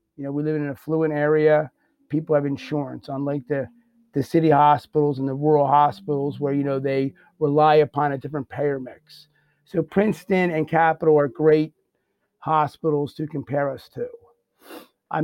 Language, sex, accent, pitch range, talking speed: English, male, American, 140-170 Hz, 165 wpm